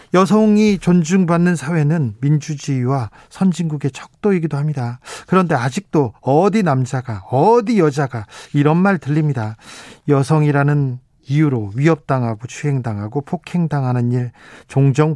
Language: Korean